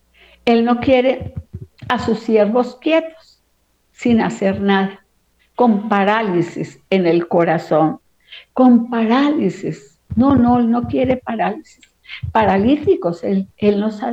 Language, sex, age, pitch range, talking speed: Spanish, female, 50-69, 160-220 Hz, 120 wpm